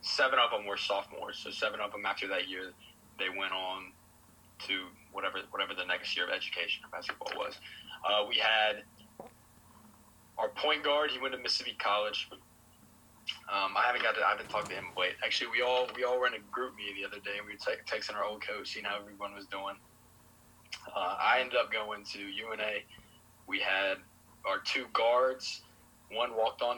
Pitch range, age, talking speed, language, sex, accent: 95-110 Hz, 20-39, 200 wpm, English, male, American